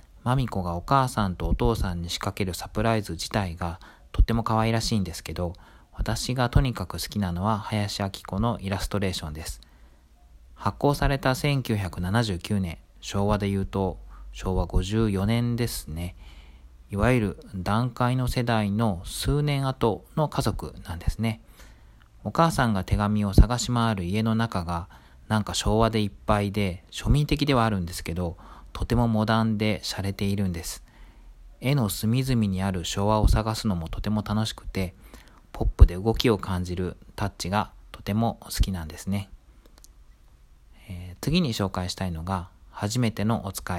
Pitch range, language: 85-115 Hz, Japanese